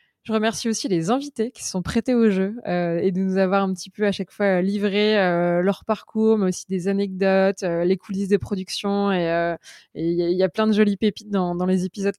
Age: 20-39